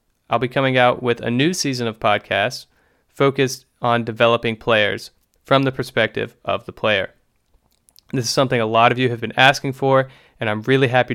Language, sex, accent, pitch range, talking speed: English, male, American, 110-130 Hz, 190 wpm